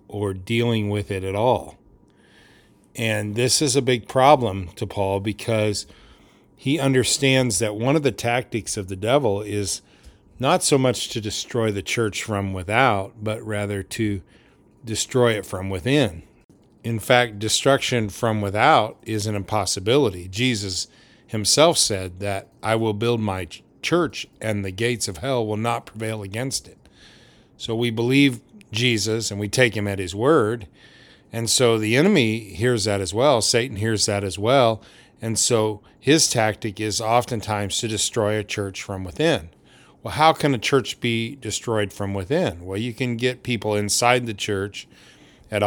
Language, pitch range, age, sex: English, 100-120 Hz, 40-59, male